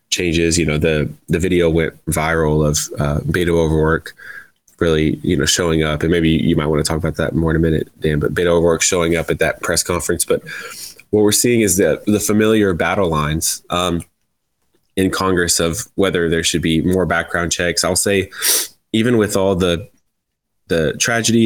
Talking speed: 195 wpm